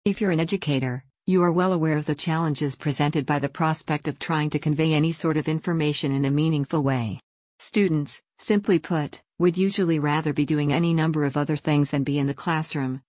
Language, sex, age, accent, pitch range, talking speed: English, female, 50-69, American, 145-170 Hz, 205 wpm